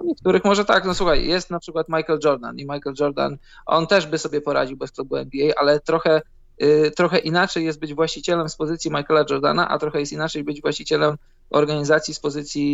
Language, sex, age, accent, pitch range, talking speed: Polish, male, 20-39, native, 140-160 Hz, 200 wpm